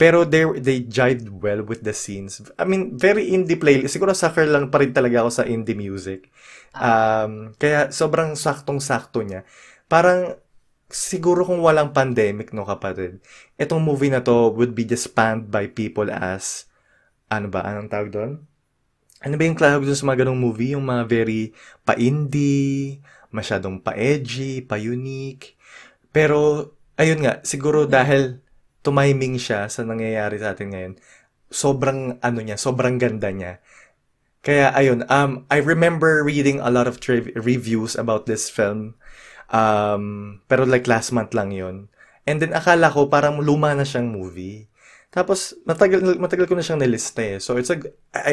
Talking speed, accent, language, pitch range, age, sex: 155 wpm, native, Filipino, 110-145 Hz, 20-39, male